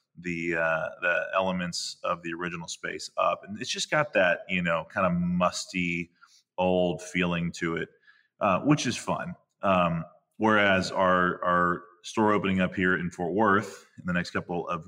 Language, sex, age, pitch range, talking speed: English, male, 20-39, 85-105 Hz, 175 wpm